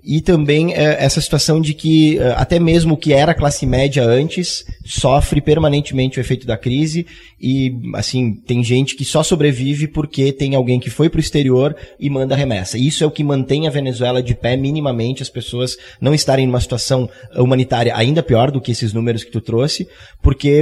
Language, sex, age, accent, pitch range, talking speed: English, male, 20-39, Brazilian, 120-145 Hz, 190 wpm